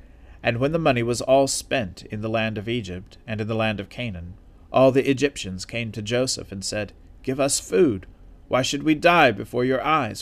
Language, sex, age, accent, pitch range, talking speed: English, male, 40-59, American, 95-130 Hz, 210 wpm